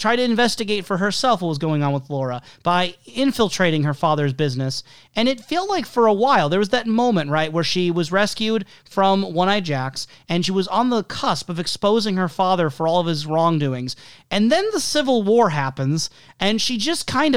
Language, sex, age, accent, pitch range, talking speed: English, male, 30-49, American, 155-230 Hz, 210 wpm